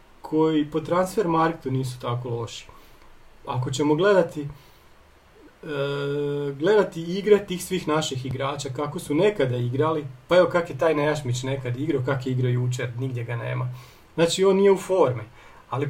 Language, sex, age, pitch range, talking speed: Croatian, male, 40-59, 125-180 Hz, 160 wpm